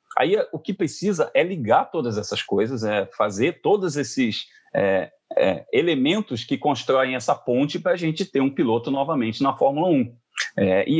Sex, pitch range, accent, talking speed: male, 120-185 Hz, Brazilian, 160 wpm